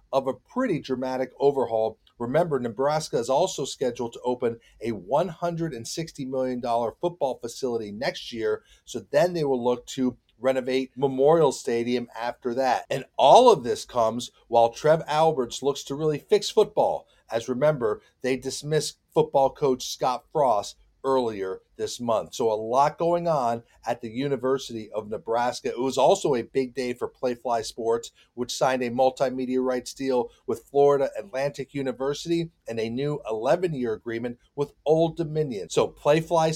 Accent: American